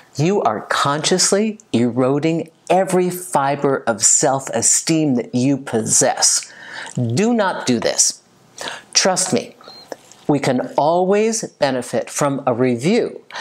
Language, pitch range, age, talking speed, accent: English, 130-185 Hz, 50-69, 105 wpm, American